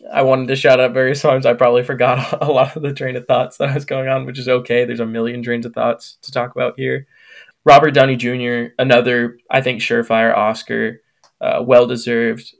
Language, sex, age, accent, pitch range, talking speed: English, male, 20-39, American, 120-140 Hz, 210 wpm